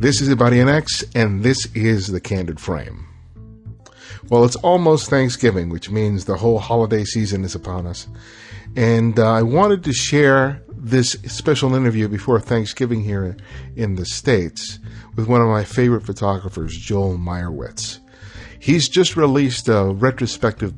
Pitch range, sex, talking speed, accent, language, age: 95-120 Hz, male, 150 wpm, American, English, 50-69